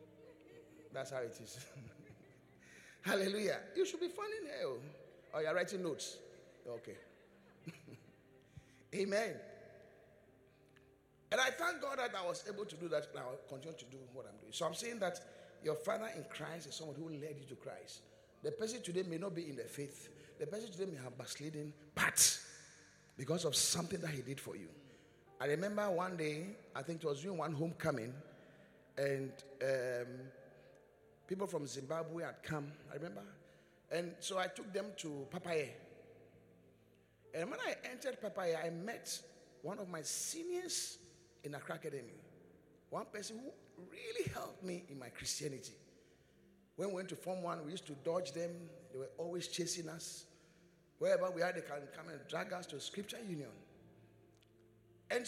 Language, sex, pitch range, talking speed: English, male, 140-195 Hz, 165 wpm